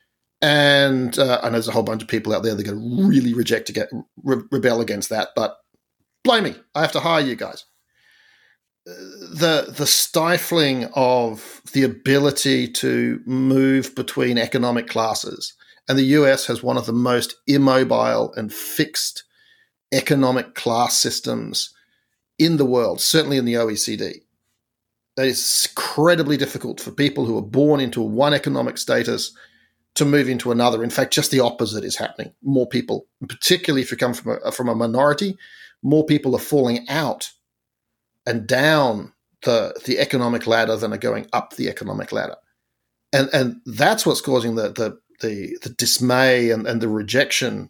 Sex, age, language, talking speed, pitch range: male, 40-59, English, 165 wpm, 120-145 Hz